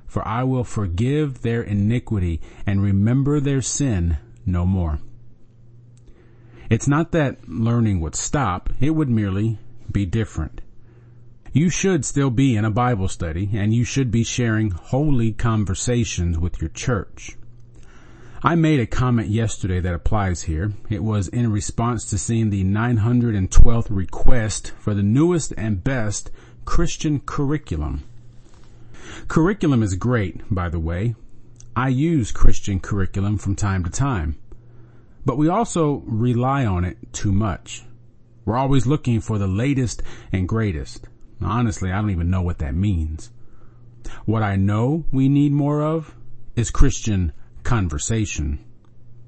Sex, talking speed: male, 140 wpm